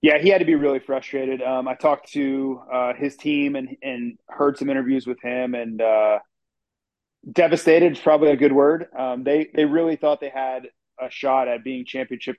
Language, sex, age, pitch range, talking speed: English, male, 30-49, 125-150 Hz, 200 wpm